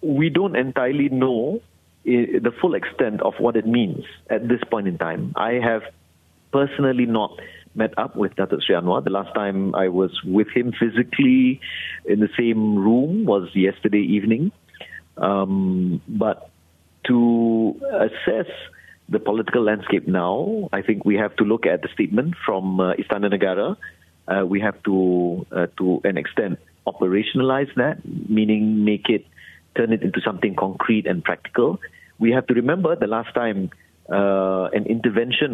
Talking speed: 155 wpm